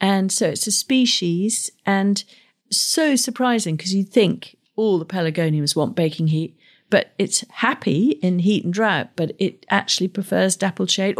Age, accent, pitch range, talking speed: 50-69, British, 165-210 Hz, 165 wpm